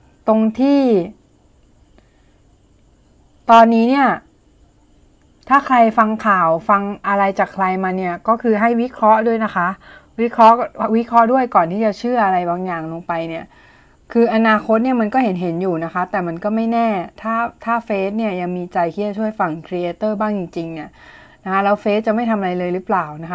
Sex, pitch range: female, 175-220 Hz